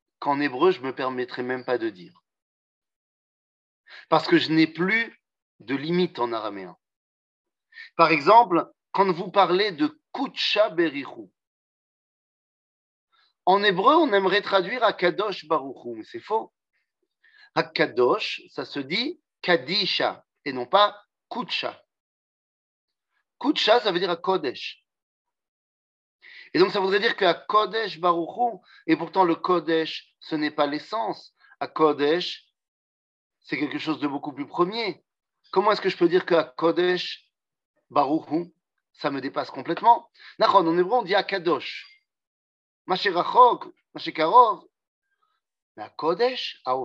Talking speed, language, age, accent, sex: 135 wpm, French, 40-59, French, male